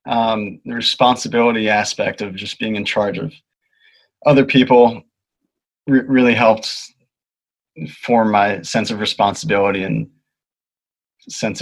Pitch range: 110-140 Hz